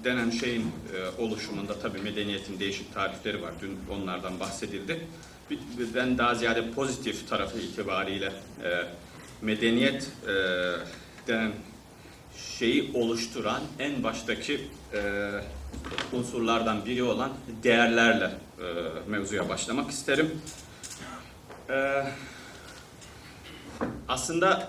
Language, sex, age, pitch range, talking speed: Turkish, male, 40-59, 100-135 Hz, 85 wpm